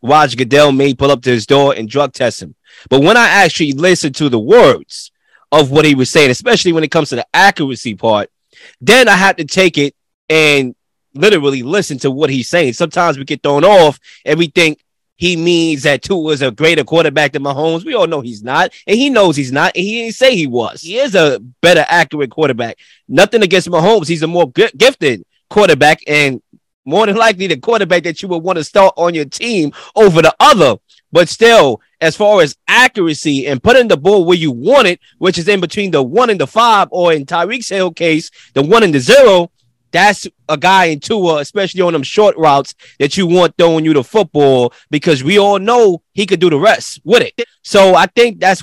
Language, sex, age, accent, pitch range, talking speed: English, male, 20-39, American, 145-195 Hz, 220 wpm